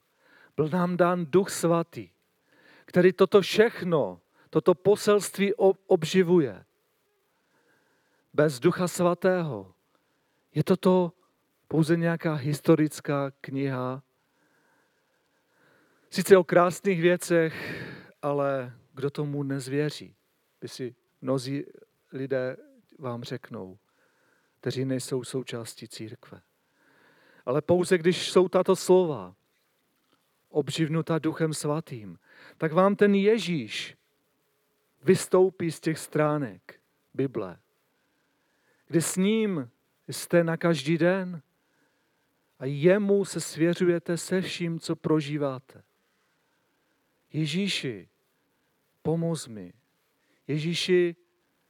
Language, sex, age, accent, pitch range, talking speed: Czech, male, 40-59, native, 140-185 Hz, 90 wpm